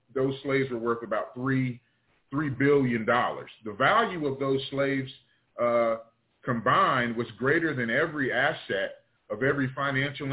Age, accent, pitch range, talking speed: 30-49, American, 115-135 Hz, 135 wpm